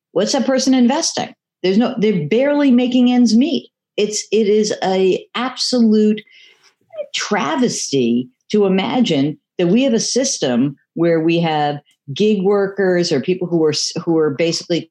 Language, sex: English, female